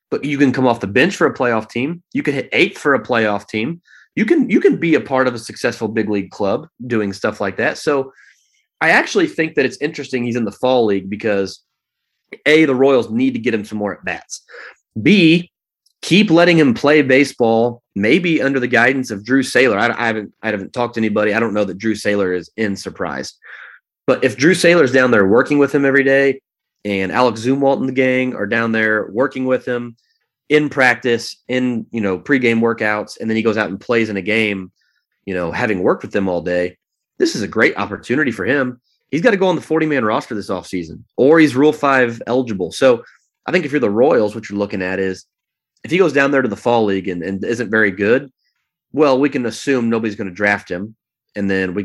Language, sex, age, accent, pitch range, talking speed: English, male, 30-49, American, 105-135 Hz, 230 wpm